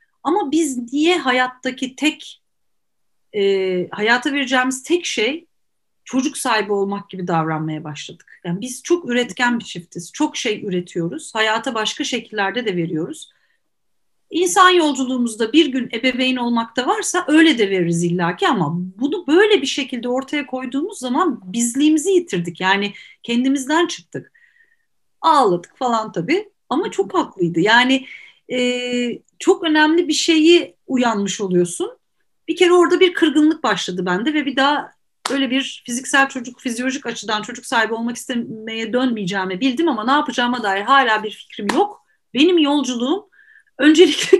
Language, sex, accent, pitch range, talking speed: Turkish, female, native, 200-310 Hz, 135 wpm